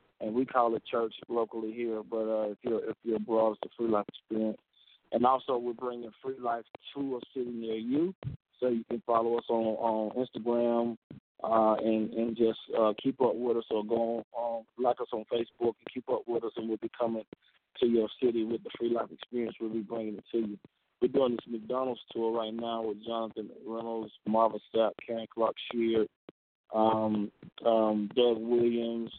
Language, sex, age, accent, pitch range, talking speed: English, male, 20-39, American, 110-120 Hz, 195 wpm